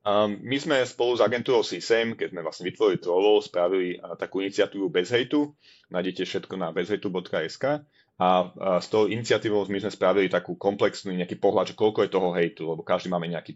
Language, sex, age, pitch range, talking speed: Slovak, male, 30-49, 90-145 Hz, 185 wpm